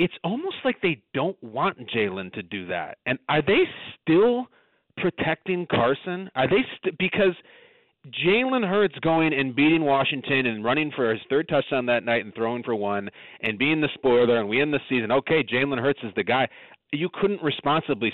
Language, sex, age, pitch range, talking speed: English, male, 40-59, 125-175 Hz, 185 wpm